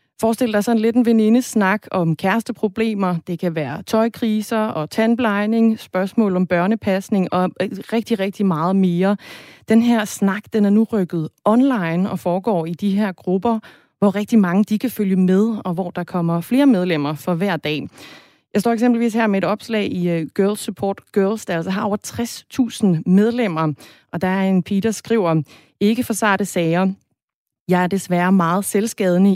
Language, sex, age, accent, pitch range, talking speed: Danish, female, 30-49, native, 175-215 Hz, 175 wpm